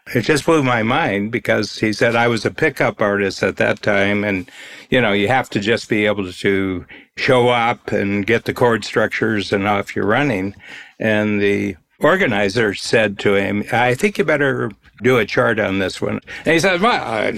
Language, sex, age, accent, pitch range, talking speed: English, male, 60-79, American, 100-130 Hz, 195 wpm